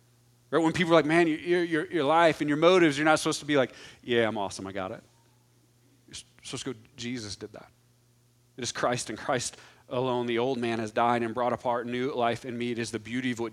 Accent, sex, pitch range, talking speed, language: American, male, 120-140 Hz, 250 wpm, English